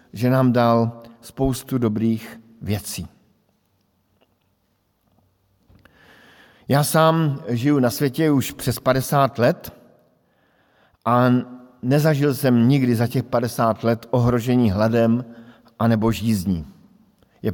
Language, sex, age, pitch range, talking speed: Slovak, male, 50-69, 105-130 Hz, 95 wpm